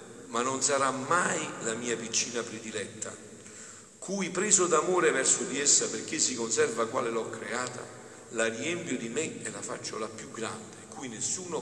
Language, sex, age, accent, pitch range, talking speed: Italian, male, 50-69, native, 105-175 Hz, 165 wpm